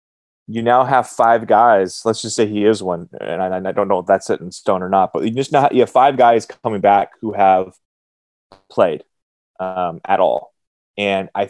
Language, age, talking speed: English, 20-39, 220 wpm